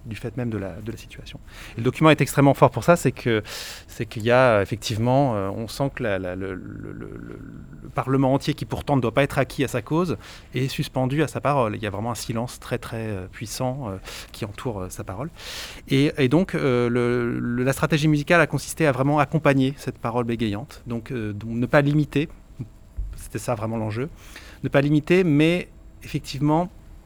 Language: French